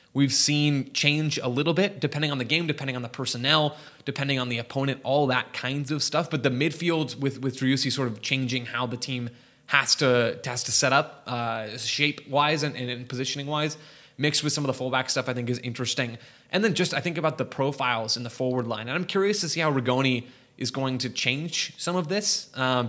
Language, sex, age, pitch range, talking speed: English, male, 20-39, 125-145 Hz, 225 wpm